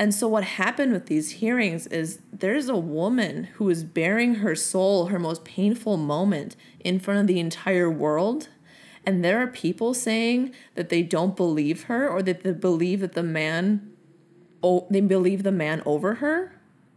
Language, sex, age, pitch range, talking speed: English, female, 20-39, 160-195 Hz, 175 wpm